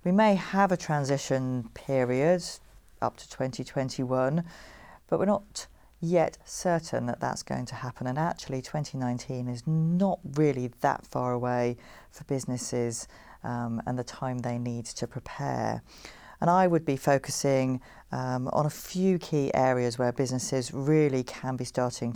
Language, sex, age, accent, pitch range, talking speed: English, female, 40-59, British, 125-150 Hz, 150 wpm